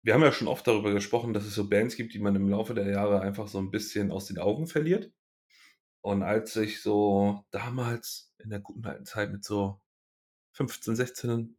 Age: 30-49